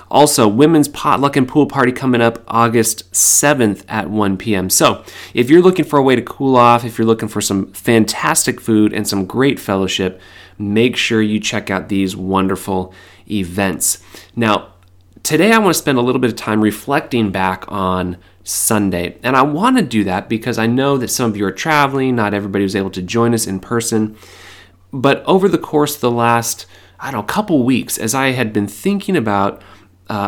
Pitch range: 95-125 Hz